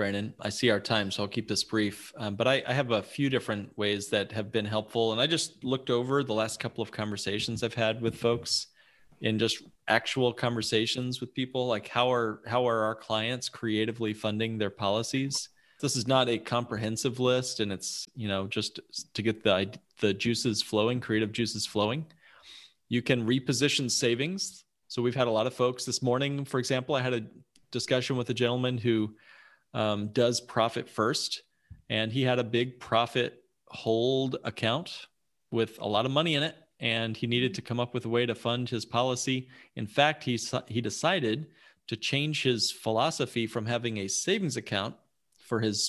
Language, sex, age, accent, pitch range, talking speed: English, male, 30-49, American, 110-125 Hz, 190 wpm